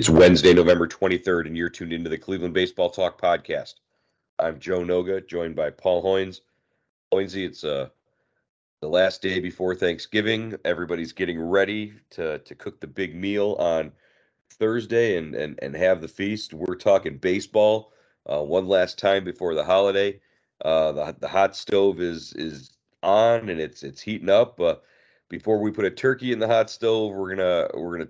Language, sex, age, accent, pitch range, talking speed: English, male, 40-59, American, 85-100 Hz, 175 wpm